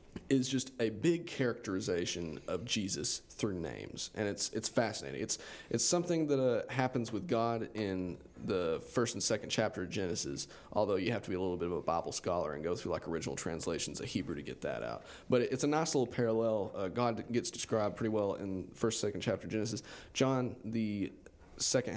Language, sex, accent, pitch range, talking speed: English, male, American, 105-130 Hz, 205 wpm